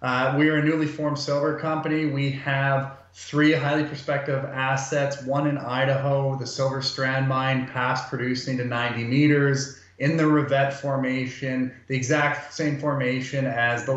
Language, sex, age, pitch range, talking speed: English, male, 30-49, 125-140 Hz, 155 wpm